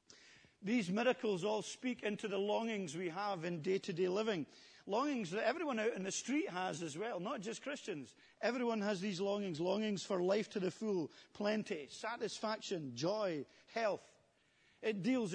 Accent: British